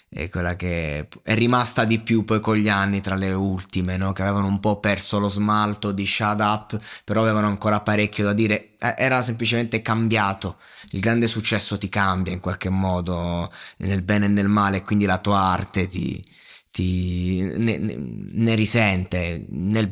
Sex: male